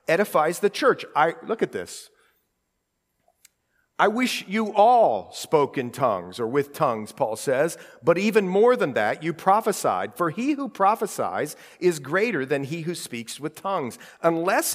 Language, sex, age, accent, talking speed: English, male, 50-69, American, 160 wpm